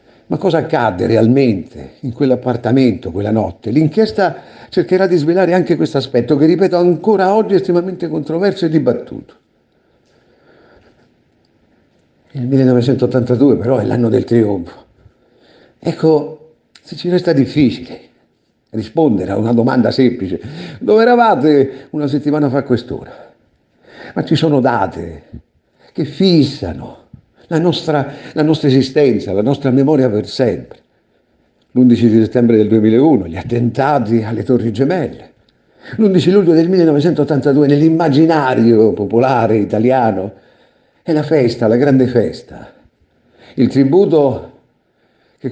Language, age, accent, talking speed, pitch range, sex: Italian, 50-69, native, 115 wpm, 120-160 Hz, male